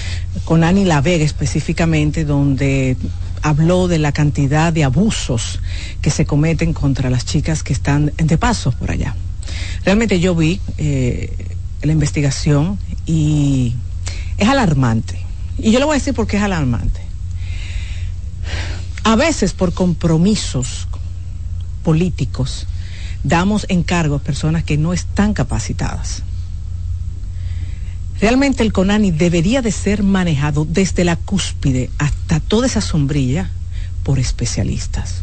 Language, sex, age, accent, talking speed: Spanish, female, 50-69, American, 120 wpm